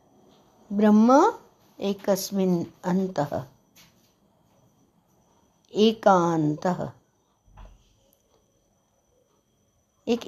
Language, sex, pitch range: Hindi, female, 175-220 Hz